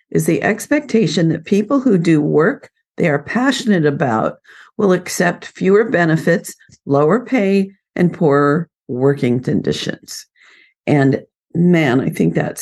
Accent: American